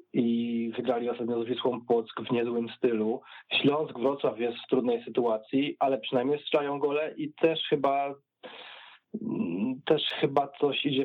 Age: 20-39